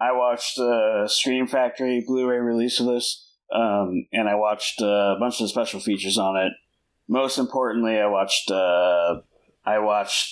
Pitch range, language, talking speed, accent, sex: 95-120 Hz, English, 170 wpm, American, male